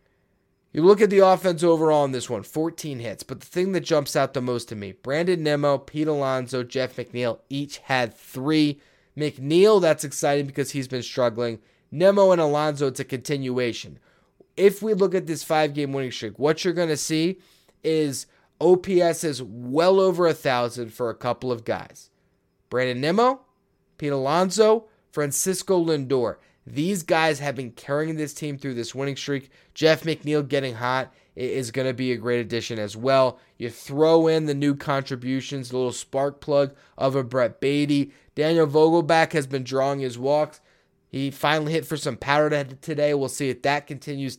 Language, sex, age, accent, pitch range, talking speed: English, male, 20-39, American, 130-160 Hz, 175 wpm